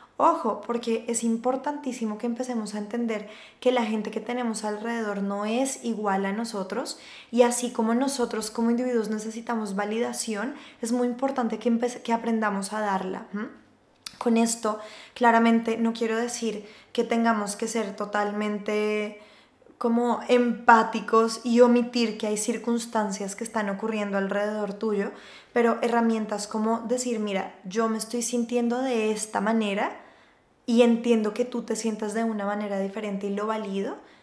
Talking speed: 145 wpm